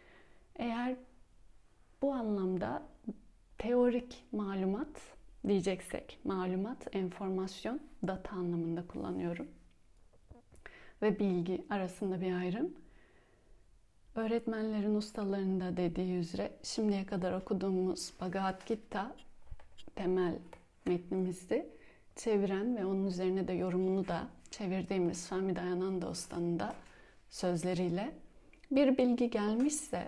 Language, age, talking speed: Turkish, 30-49, 85 wpm